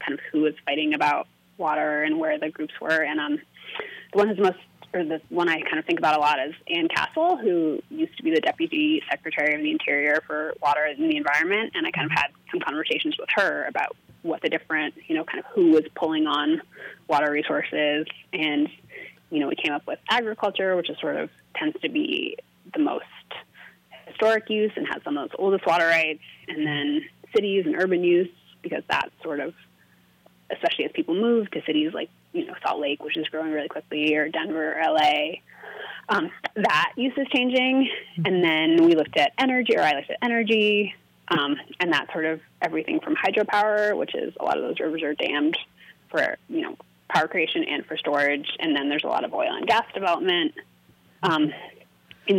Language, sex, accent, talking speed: English, female, American, 205 wpm